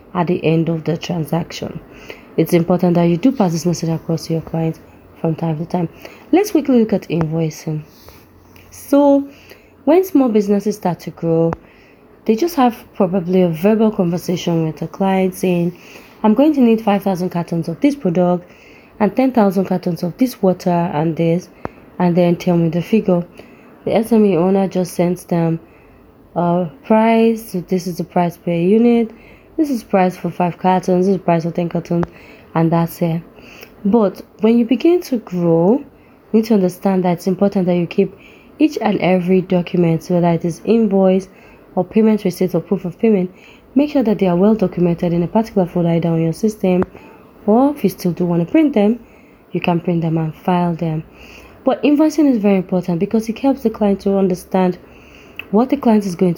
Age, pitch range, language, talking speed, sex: 20-39, 170-215 Hz, English, 190 wpm, female